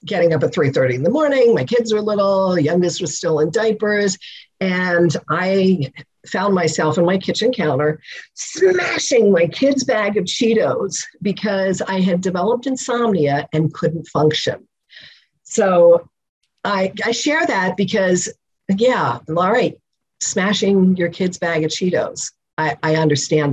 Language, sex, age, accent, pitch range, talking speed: English, female, 50-69, American, 160-220 Hz, 145 wpm